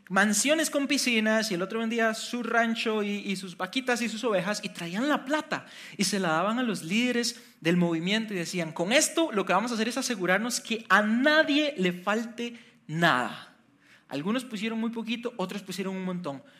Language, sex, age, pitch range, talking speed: Spanish, male, 30-49, 185-235 Hz, 195 wpm